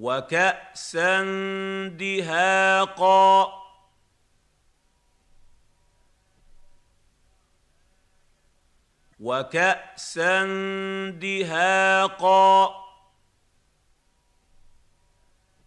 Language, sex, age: Arabic, male, 50-69